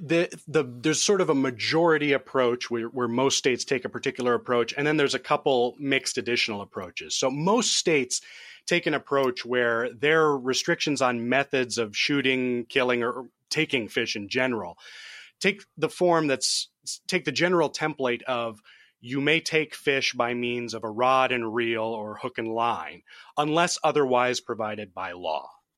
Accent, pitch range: American, 115-140 Hz